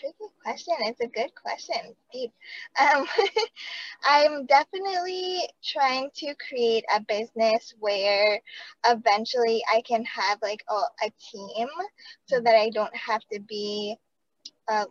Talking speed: 125 wpm